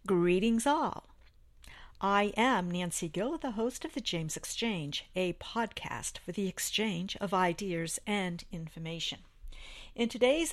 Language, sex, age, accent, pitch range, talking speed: English, female, 50-69, American, 175-230 Hz, 130 wpm